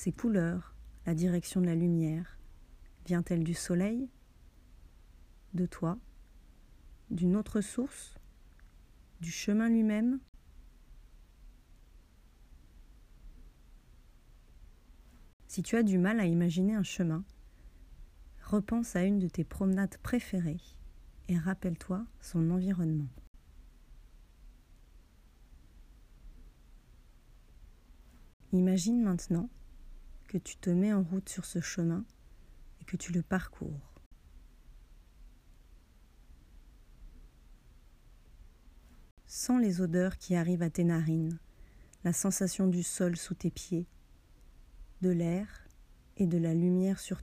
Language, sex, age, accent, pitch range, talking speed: French, female, 40-59, French, 155-190 Hz, 95 wpm